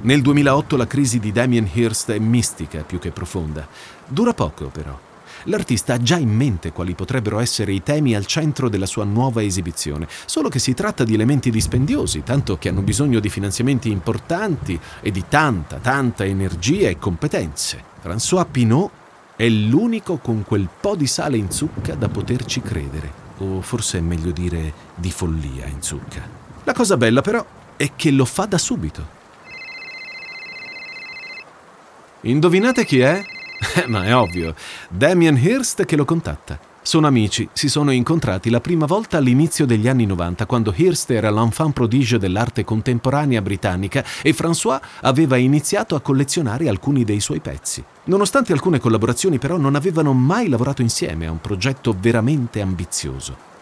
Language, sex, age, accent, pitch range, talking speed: Italian, male, 40-59, native, 95-140 Hz, 155 wpm